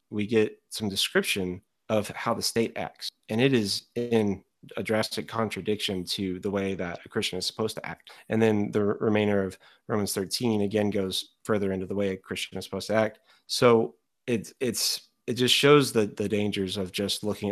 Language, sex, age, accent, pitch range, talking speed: English, male, 30-49, American, 100-120 Hz, 200 wpm